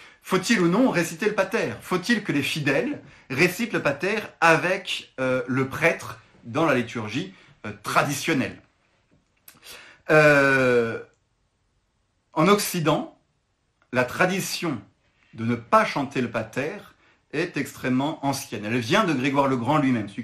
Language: French